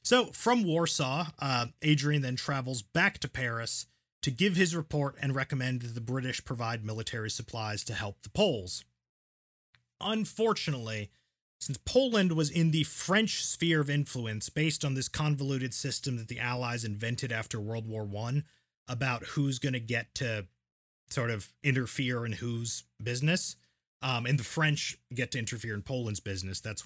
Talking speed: 160 wpm